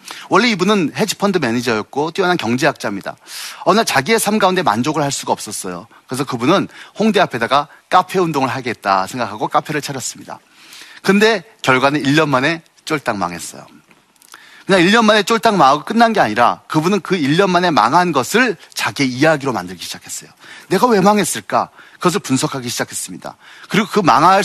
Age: 40-59